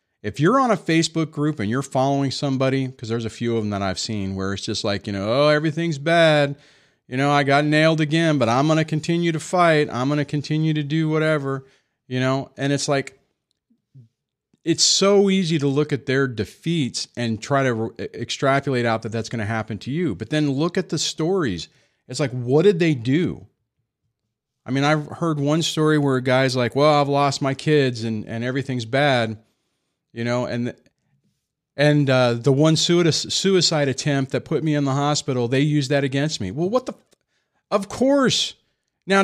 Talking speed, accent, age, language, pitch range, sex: 200 wpm, American, 40-59, English, 130-165 Hz, male